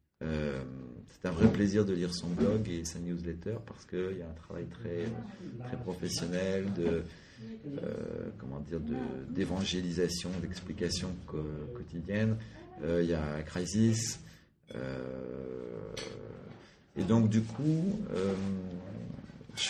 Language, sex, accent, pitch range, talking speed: French, male, French, 85-105 Hz, 130 wpm